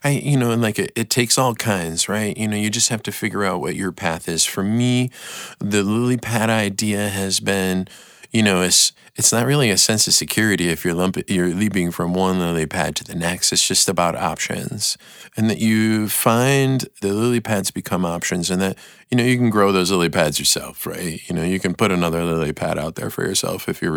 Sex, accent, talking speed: male, American, 230 wpm